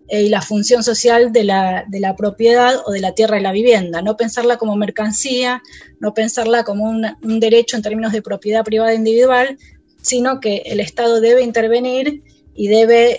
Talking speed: 180 wpm